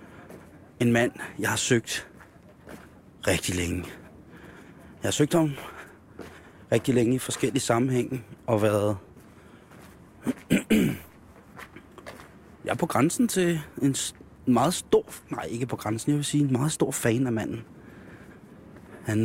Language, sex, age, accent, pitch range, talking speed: Danish, male, 30-49, native, 100-130 Hz, 125 wpm